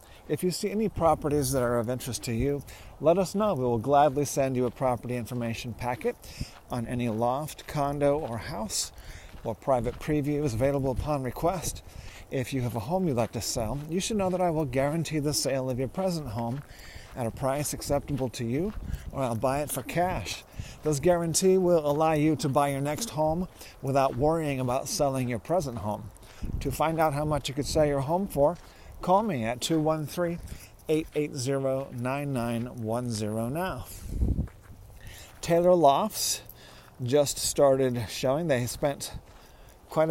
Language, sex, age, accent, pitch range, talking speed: English, male, 50-69, American, 115-150 Hz, 170 wpm